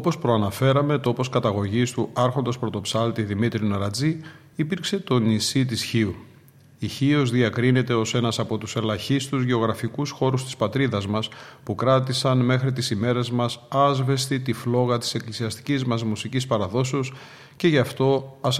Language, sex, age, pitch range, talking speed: Greek, male, 40-59, 115-135 Hz, 145 wpm